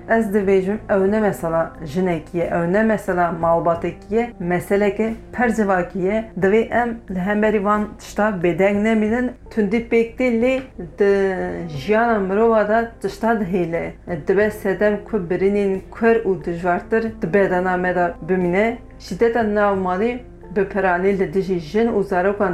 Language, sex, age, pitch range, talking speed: Turkish, female, 40-59, 180-215 Hz, 105 wpm